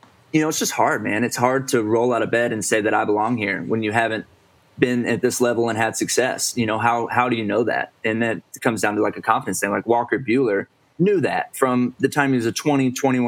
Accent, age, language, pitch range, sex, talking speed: American, 20-39, English, 105-125 Hz, male, 260 wpm